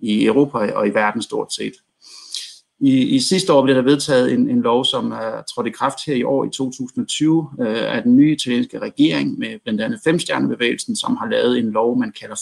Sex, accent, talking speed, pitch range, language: male, native, 215 wpm, 120-165 Hz, Danish